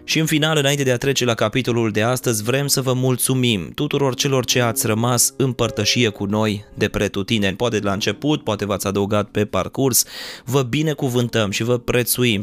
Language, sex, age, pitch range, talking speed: Romanian, male, 20-39, 105-125 Hz, 195 wpm